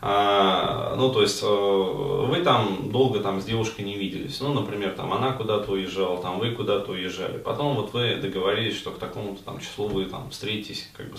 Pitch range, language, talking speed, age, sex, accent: 100-125 Hz, Russian, 195 wpm, 20-39, male, native